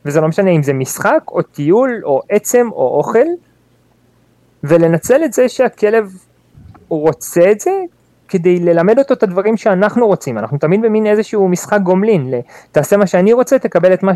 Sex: male